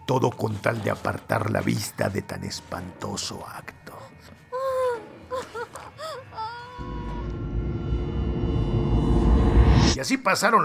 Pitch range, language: 125-190 Hz, Spanish